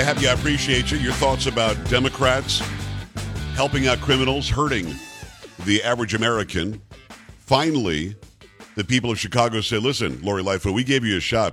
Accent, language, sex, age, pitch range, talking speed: American, English, male, 50-69, 100-130 Hz, 145 wpm